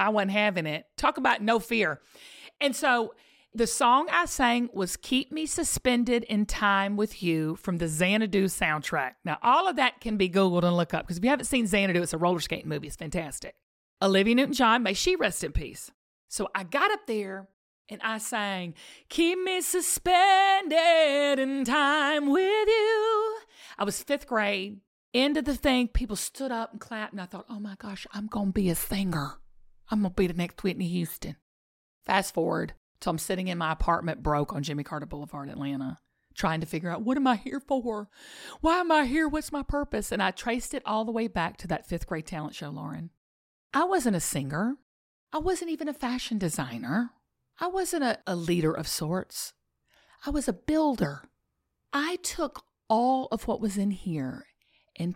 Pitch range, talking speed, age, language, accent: 175-280 Hz, 195 wpm, 40-59, English, American